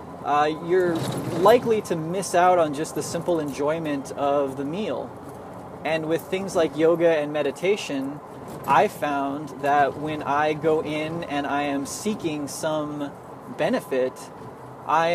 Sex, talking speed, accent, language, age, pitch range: male, 140 wpm, American, English, 20-39, 140-165 Hz